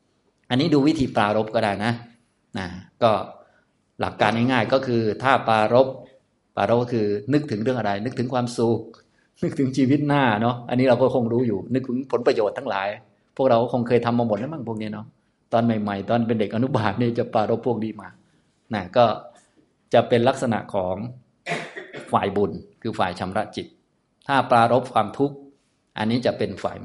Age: 20-39